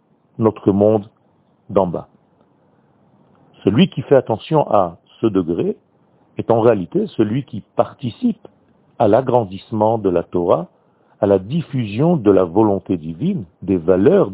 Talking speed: 130 wpm